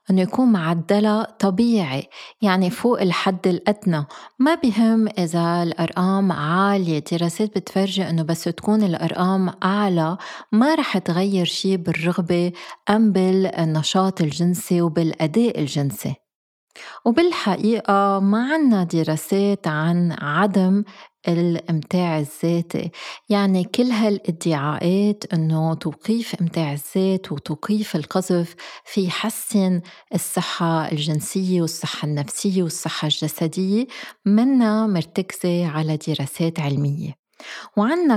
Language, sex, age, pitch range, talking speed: Arabic, female, 30-49, 165-200 Hz, 95 wpm